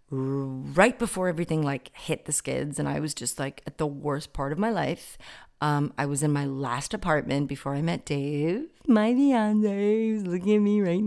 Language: English